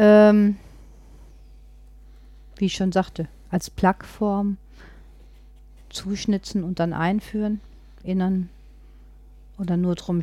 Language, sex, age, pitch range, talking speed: German, female, 50-69, 165-200 Hz, 80 wpm